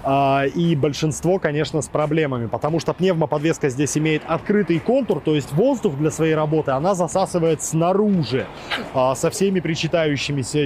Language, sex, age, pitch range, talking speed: Russian, male, 20-39, 140-175 Hz, 135 wpm